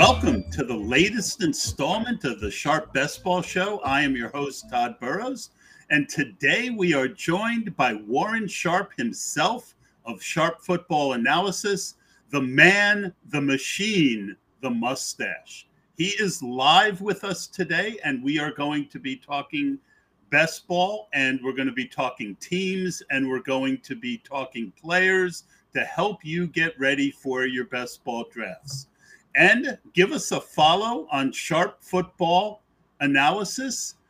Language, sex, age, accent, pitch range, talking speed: English, male, 50-69, American, 135-195 Hz, 150 wpm